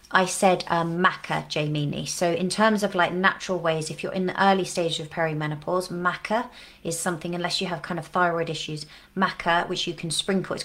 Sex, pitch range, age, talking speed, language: female, 165-185 Hz, 30-49, 205 wpm, English